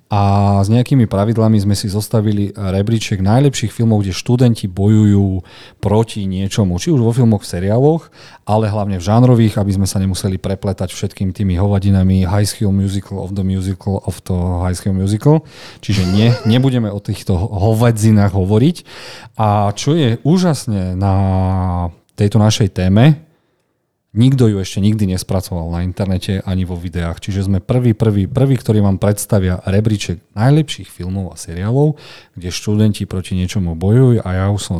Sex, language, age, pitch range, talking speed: male, Slovak, 40-59, 95-115 Hz, 155 wpm